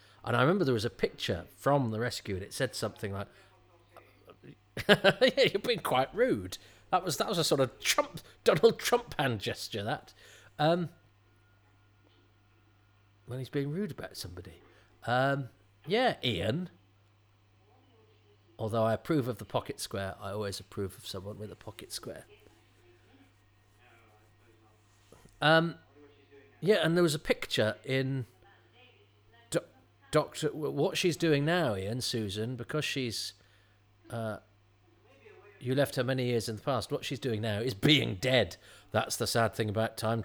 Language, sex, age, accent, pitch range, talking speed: English, male, 40-59, British, 105-140 Hz, 145 wpm